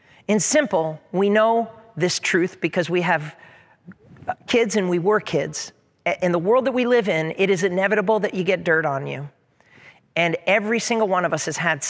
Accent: American